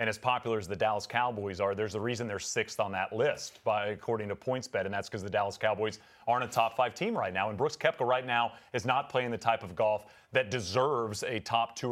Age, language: 30-49, English